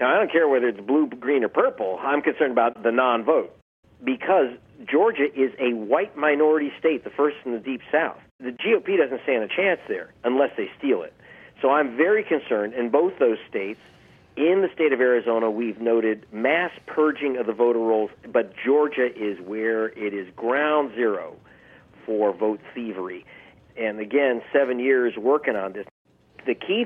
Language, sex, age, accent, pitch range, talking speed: English, male, 50-69, American, 115-155 Hz, 180 wpm